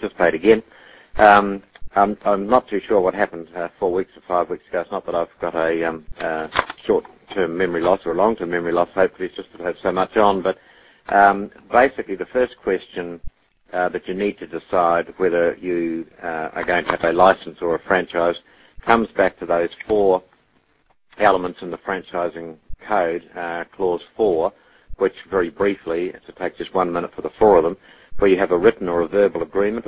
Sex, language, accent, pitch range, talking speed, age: male, English, Australian, 85-100 Hz, 205 wpm, 50-69